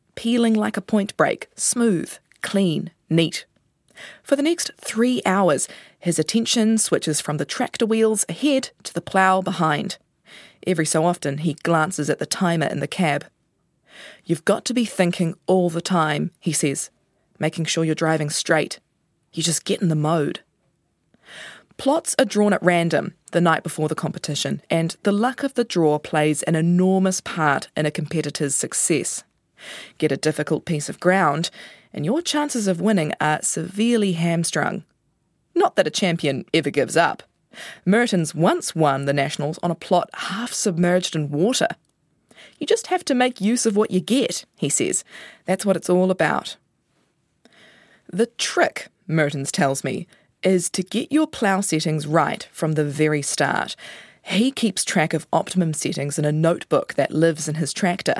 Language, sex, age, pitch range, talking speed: English, female, 20-39, 155-210 Hz, 165 wpm